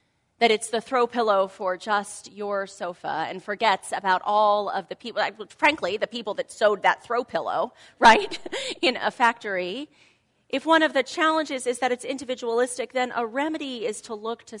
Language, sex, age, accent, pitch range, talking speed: English, female, 30-49, American, 190-245 Hz, 180 wpm